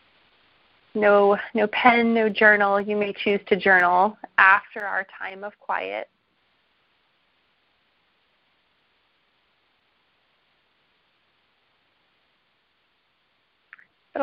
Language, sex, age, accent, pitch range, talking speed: English, female, 30-49, American, 185-225 Hz, 65 wpm